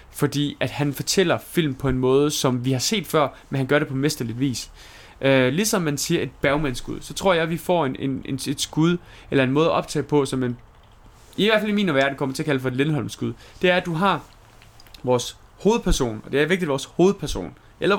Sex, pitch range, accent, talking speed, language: male, 125-160 Hz, native, 240 wpm, Danish